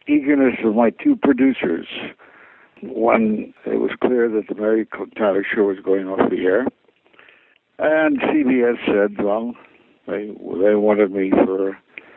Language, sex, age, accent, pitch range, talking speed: English, male, 60-79, American, 100-125 Hz, 140 wpm